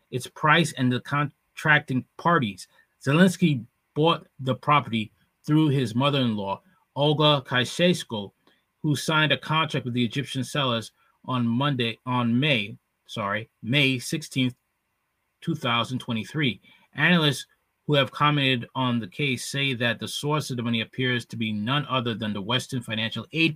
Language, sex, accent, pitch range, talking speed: English, male, American, 125-155 Hz, 140 wpm